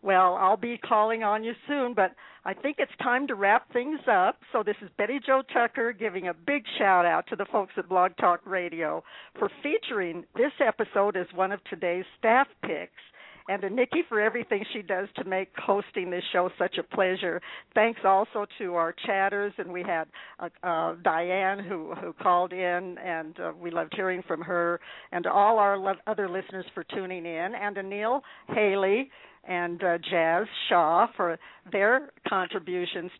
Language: English